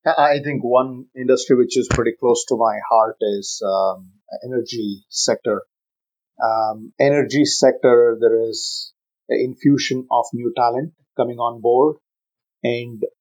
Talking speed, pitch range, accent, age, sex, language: 130 wpm, 110-140 Hz, Indian, 30-49, male, English